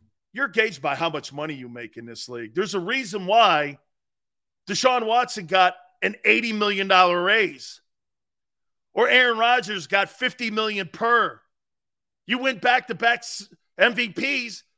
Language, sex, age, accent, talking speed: English, male, 40-59, American, 135 wpm